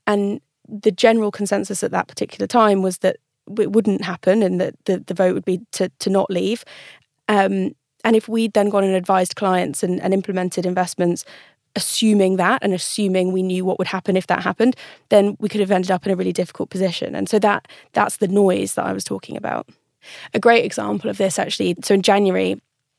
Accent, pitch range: British, 185-210 Hz